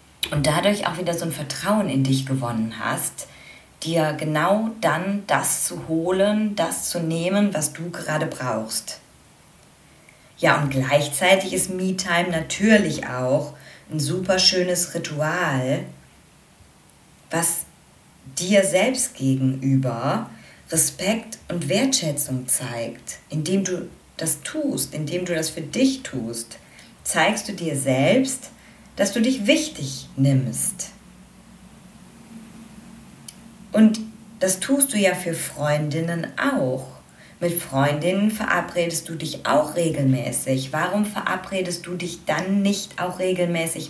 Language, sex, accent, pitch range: German, female, German, 150-195 Hz